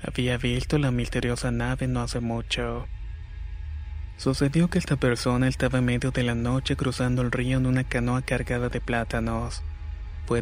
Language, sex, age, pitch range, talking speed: Spanish, male, 20-39, 115-125 Hz, 160 wpm